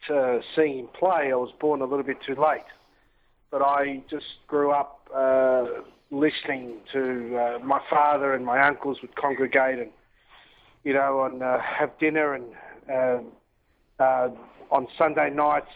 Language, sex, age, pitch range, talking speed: English, male, 40-59, 130-145 Hz, 150 wpm